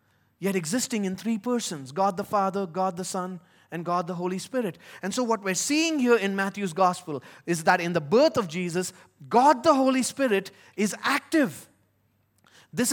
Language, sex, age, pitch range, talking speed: English, male, 30-49, 150-230 Hz, 180 wpm